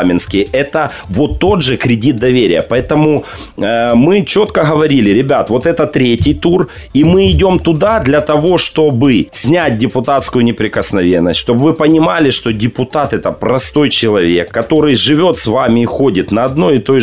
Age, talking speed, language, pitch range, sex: 40-59, 160 wpm, Ukrainian, 115-150 Hz, male